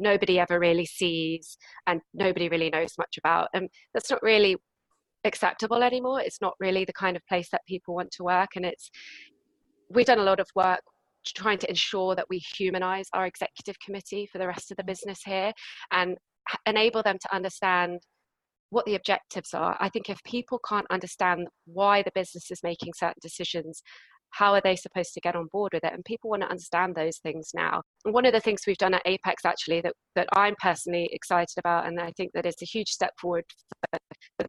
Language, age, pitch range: English, 20-39, 175-200 Hz